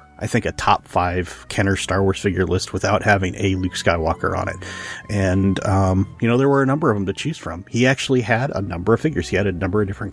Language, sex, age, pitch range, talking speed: English, male, 30-49, 95-115 Hz, 255 wpm